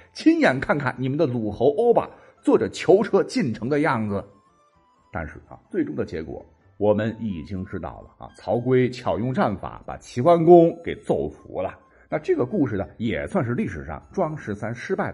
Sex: male